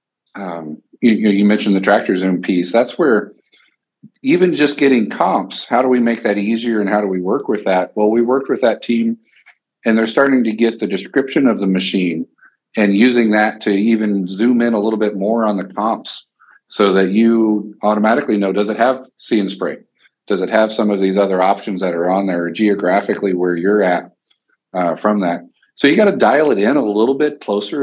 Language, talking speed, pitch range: English, 210 wpm, 100-115 Hz